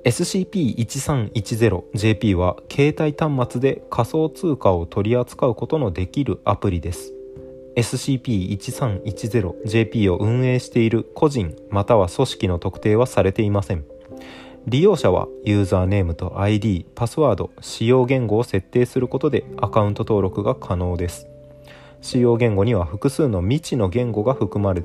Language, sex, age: Japanese, male, 20-39